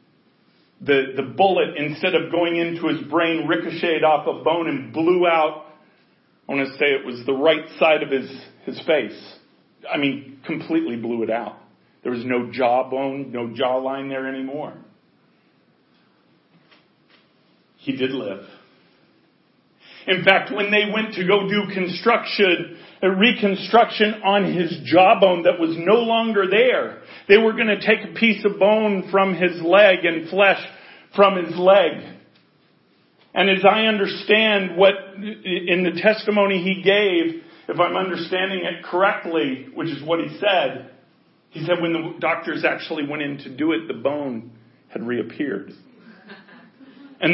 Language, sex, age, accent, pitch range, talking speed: English, male, 40-59, American, 155-200 Hz, 150 wpm